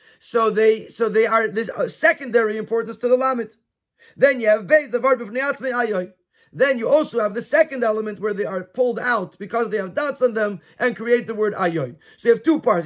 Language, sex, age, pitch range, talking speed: English, male, 30-49, 190-245 Hz, 220 wpm